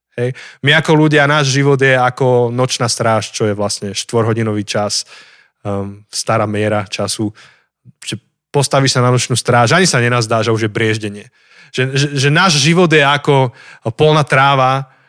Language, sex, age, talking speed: Slovak, male, 20-39, 165 wpm